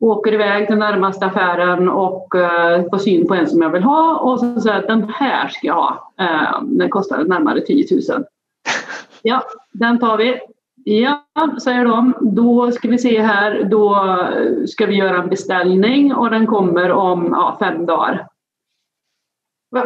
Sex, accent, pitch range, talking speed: female, native, 190-260 Hz, 170 wpm